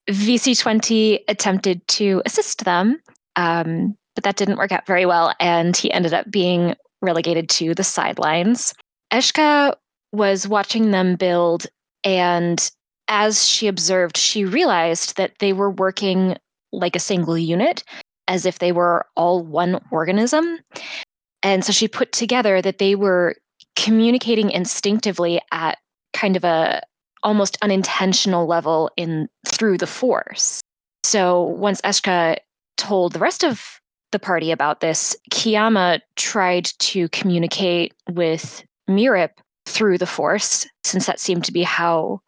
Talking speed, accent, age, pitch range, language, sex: 135 wpm, American, 20-39, 175-210 Hz, English, female